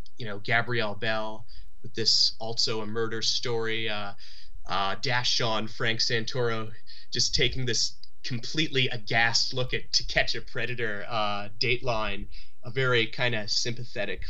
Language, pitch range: English, 110-135 Hz